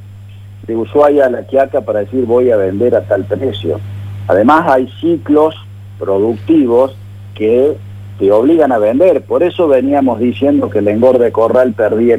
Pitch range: 100-145 Hz